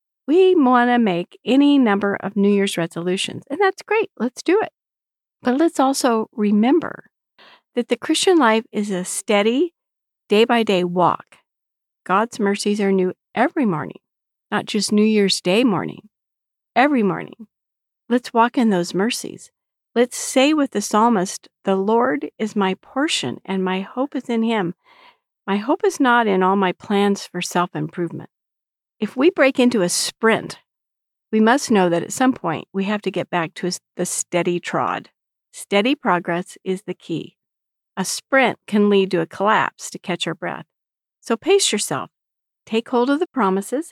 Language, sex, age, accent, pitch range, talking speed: English, female, 50-69, American, 190-260 Hz, 165 wpm